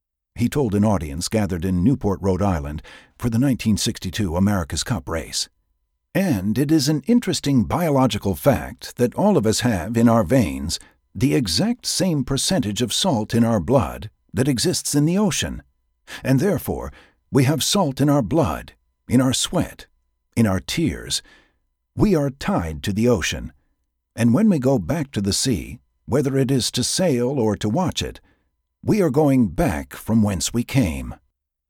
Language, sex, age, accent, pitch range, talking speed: English, male, 60-79, American, 85-130 Hz, 170 wpm